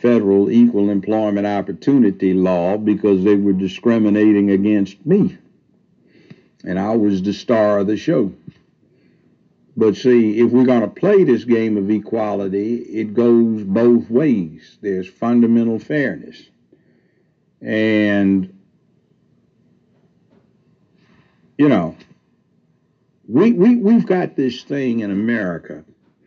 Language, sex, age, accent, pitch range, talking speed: English, male, 60-79, American, 100-120 Hz, 110 wpm